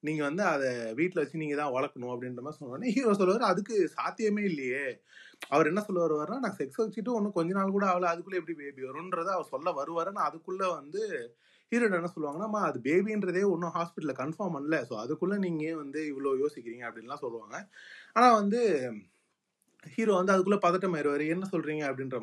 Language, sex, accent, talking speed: Tamil, male, native, 175 wpm